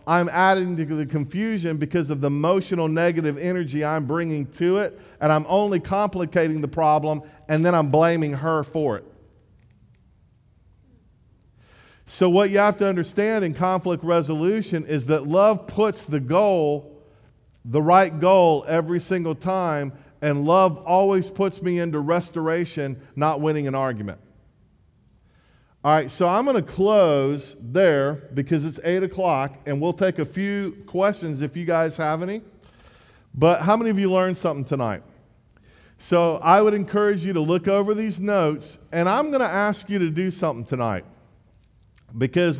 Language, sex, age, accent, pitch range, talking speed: English, male, 40-59, American, 145-185 Hz, 160 wpm